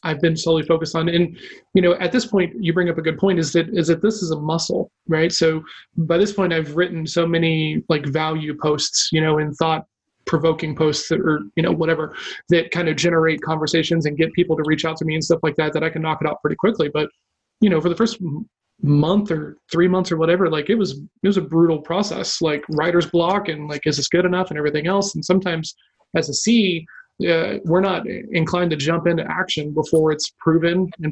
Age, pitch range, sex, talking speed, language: 30-49, 160-180 Hz, male, 235 wpm, English